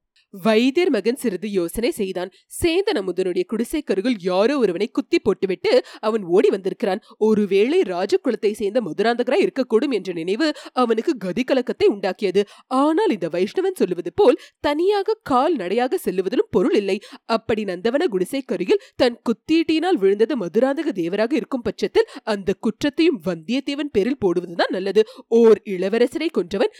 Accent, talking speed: native, 90 wpm